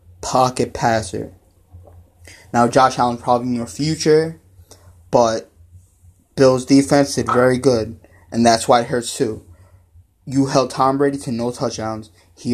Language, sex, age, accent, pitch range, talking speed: English, male, 20-39, American, 105-135 Hz, 140 wpm